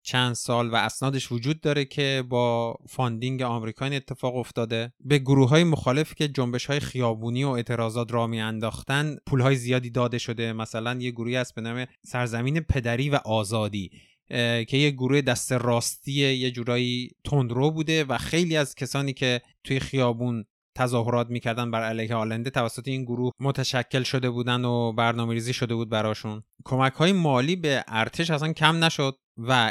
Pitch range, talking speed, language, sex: 120-140 Hz, 165 wpm, Persian, male